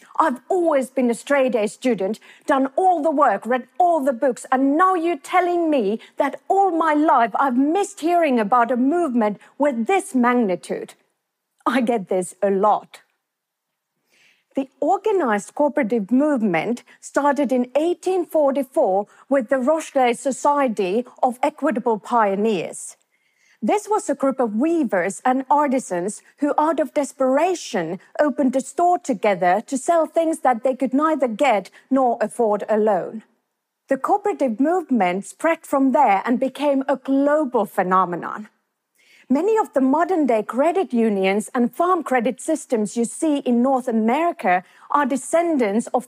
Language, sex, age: English, female, 40-59